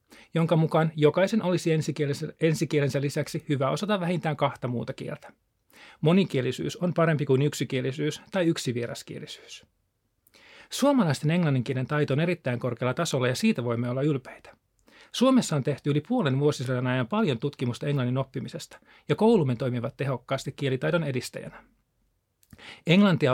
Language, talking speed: Finnish, 130 wpm